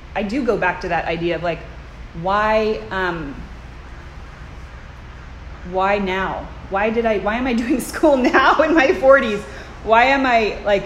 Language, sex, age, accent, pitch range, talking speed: English, female, 20-39, American, 165-200 Hz, 160 wpm